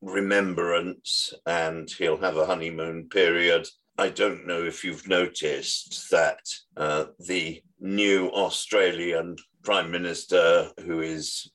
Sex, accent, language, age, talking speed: male, British, English, 50-69, 115 wpm